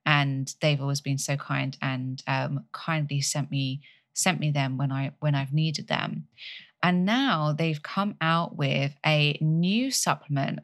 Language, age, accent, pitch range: English, 20-39, British, 145-175 Hz